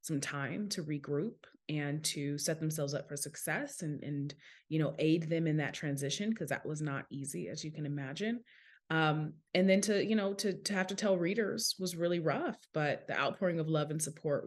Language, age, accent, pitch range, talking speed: English, 20-39, American, 145-170 Hz, 210 wpm